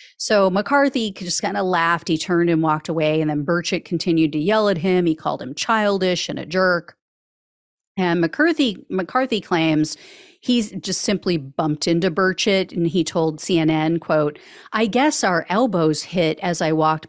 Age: 40-59